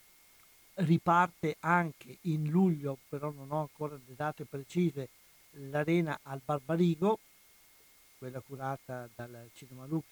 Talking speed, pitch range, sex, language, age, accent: 115 wpm, 135-165 Hz, male, Italian, 60-79, native